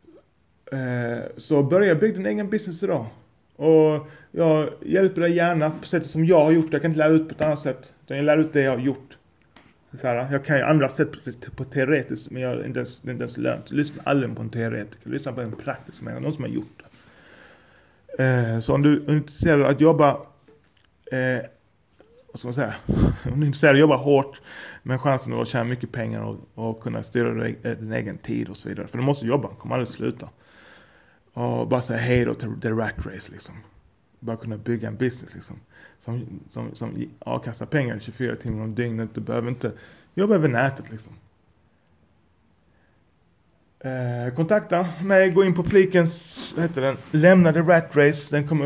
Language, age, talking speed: Swedish, 30-49, 195 wpm